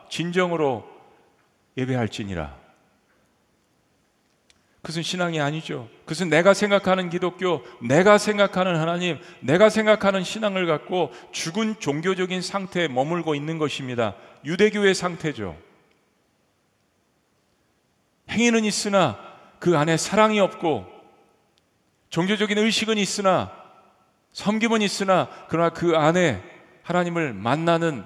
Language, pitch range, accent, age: Korean, 135-190 Hz, native, 40-59